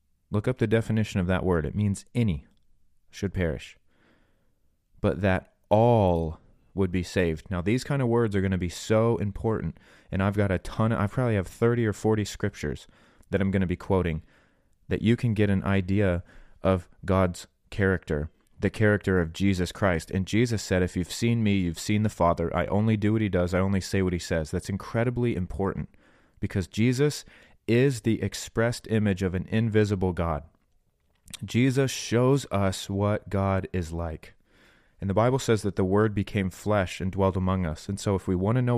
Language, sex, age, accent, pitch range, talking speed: English, male, 30-49, American, 90-110 Hz, 190 wpm